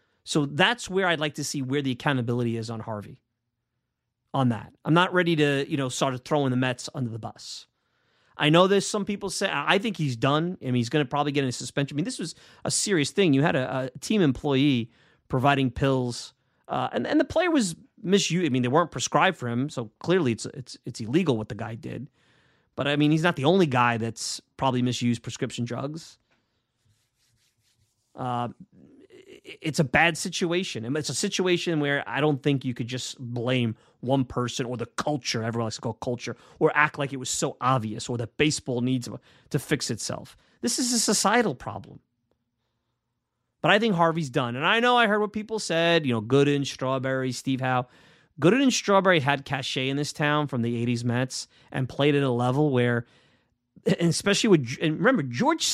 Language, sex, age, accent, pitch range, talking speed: English, male, 30-49, American, 120-165 Hz, 205 wpm